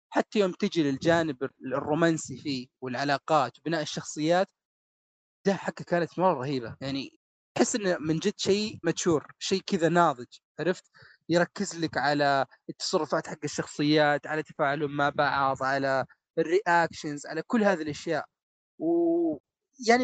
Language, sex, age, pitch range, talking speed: Arabic, male, 30-49, 155-190 Hz, 125 wpm